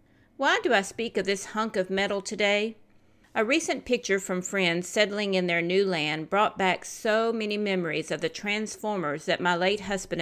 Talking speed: 190 wpm